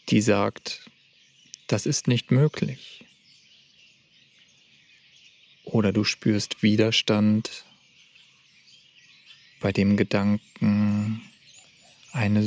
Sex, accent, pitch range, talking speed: male, German, 105-120 Hz, 65 wpm